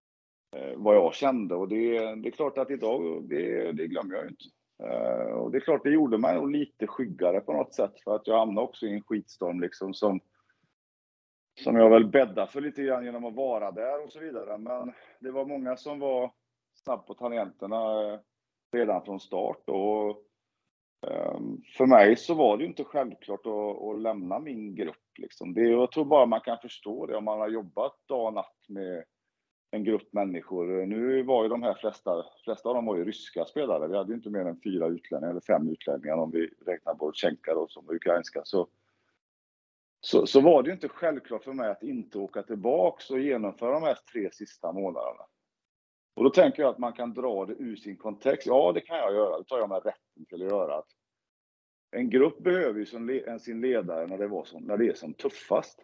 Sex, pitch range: male, 105-130 Hz